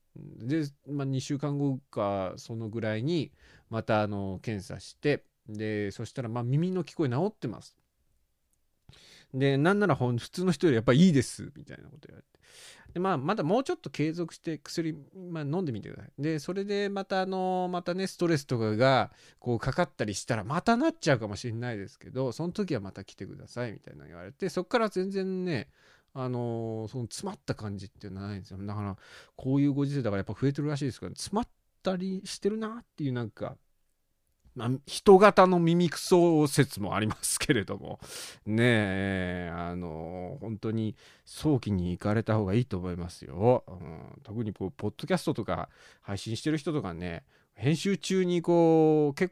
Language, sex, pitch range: Japanese, male, 105-175 Hz